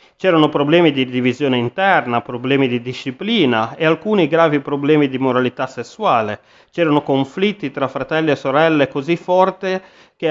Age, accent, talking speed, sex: 30-49, native, 140 wpm, male